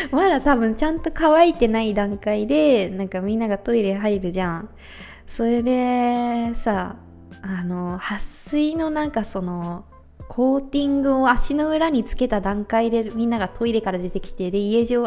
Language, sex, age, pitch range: Japanese, female, 20-39, 210-290 Hz